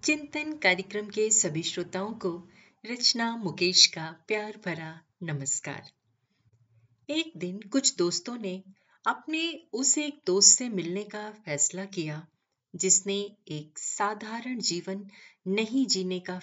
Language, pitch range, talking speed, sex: Hindi, 150-210 Hz, 120 wpm, female